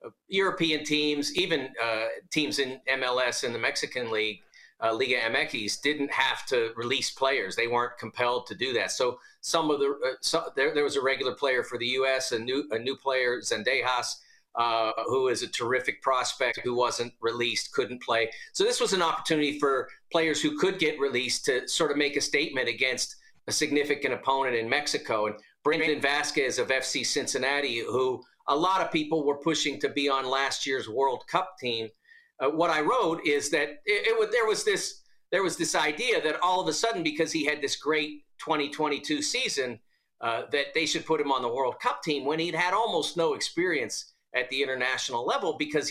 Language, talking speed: English, 190 wpm